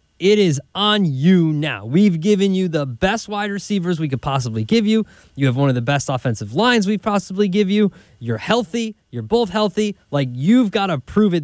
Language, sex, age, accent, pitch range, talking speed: English, male, 20-39, American, 135-185 Hz, 210 wpm